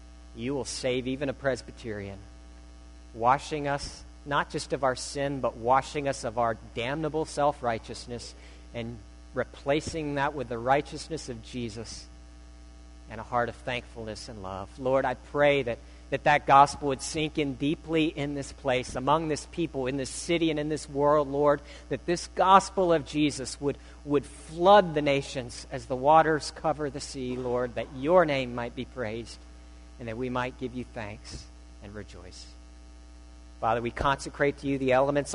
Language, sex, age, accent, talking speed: English, male, 50-69, American, 170 wpm